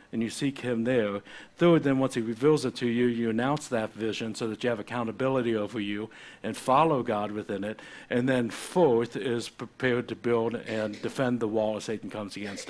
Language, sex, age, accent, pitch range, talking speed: English, male, 60-79, American, 105-125 Hz, 210 wpm